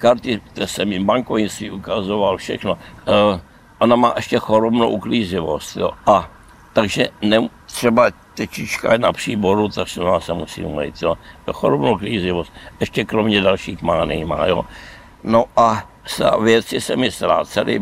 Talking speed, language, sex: 135 wpm, Czech, male